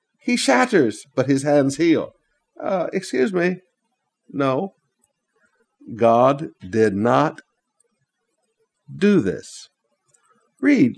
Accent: American